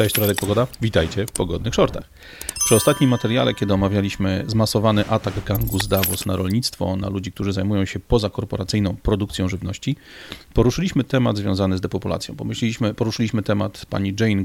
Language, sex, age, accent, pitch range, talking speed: Polish, male, 40-59, native, 95-120 Hz, 155 wpm